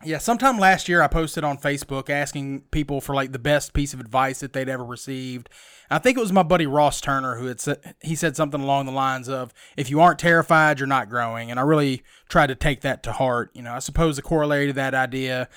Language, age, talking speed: English, 30-49, 245 wpm